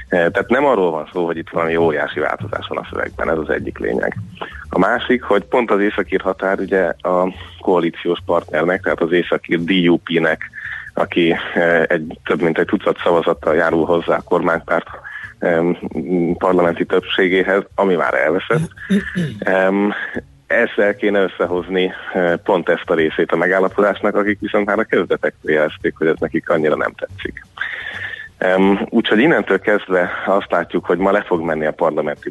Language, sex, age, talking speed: Hungarian, male, 30-49, 150 wpm